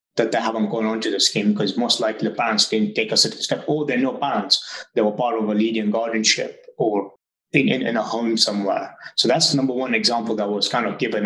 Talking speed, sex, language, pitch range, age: 255 wpm, male, English, 110-130 Hz, 20-39